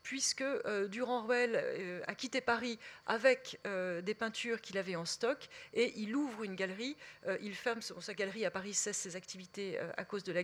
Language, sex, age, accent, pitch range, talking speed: French, female, 40-59, French, 190-235 Hz, 170 wpm